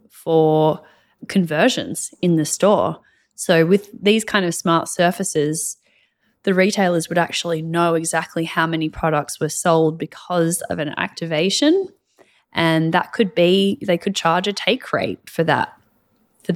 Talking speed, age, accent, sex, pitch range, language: 145 wpm, 20-39, Australian, female, 165-195 Hz, English